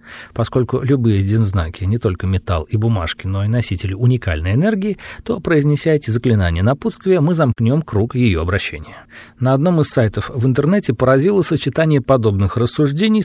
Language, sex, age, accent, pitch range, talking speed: Russian, male, 40-59, native, 110-155 Hz, 155 wpm